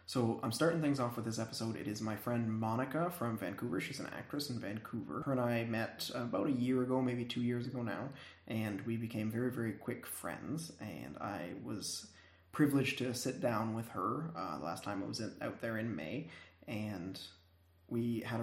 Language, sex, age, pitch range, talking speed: English, male, 20-39, 100-125 Hz, 200 wpm